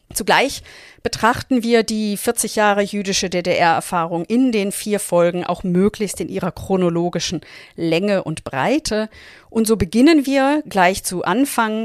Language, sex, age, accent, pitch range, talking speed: German, female, 40-59, German, 170-215 Hz, 135 wpm